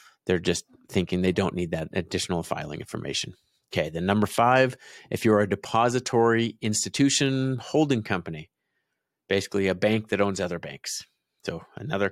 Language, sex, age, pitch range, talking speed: English, male, 30-49, 100-120 Hz, 150 wpm